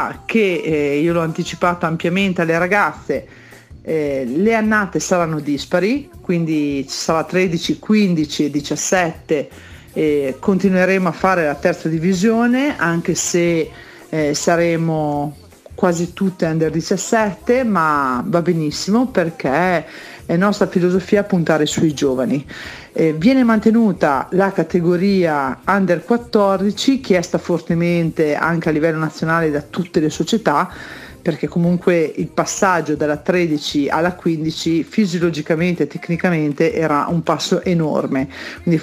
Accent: native